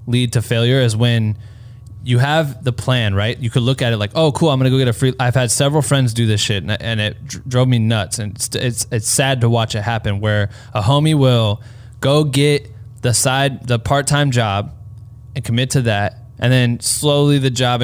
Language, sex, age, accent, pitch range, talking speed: English, male, 20-39, American, 115-135 Hz, 225 wpm